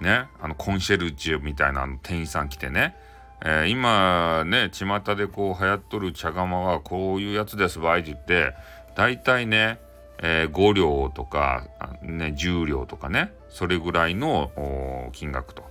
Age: 40-59